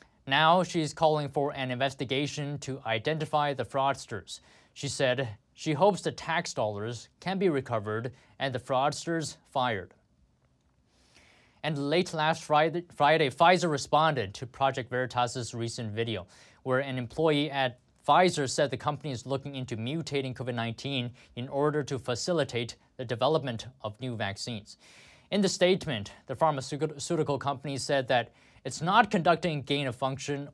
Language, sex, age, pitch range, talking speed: English, male, 20-39, 120-150 Hz, 135 wpm